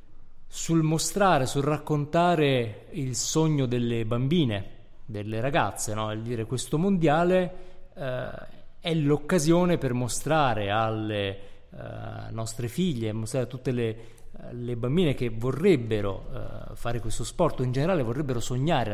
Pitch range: 110-150 Hz